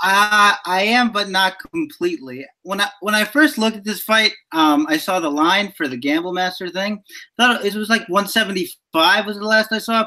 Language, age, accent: English, 30-49, American